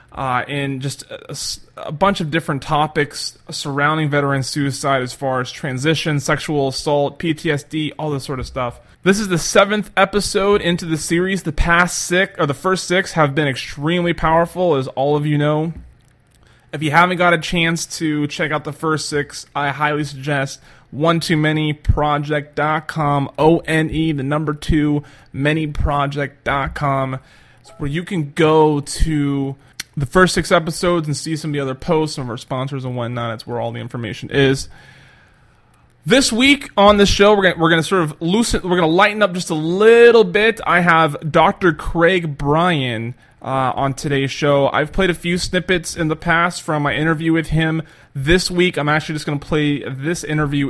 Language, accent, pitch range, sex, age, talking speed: English, American, 140-170 Hz, male, 20-39, 185 wpm